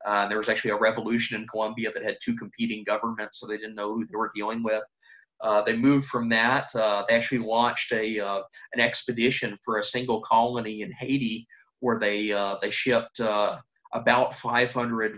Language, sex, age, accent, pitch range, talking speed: English, male, 30-49, American, 105-120 Hz, 195 wpm